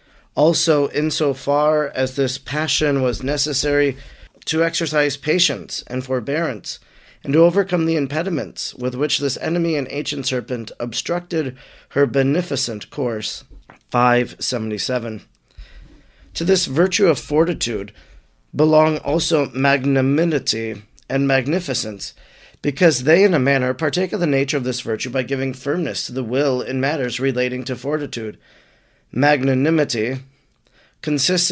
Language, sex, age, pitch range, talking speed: English, male, 40-59, 130-160 Hz, 120 wpm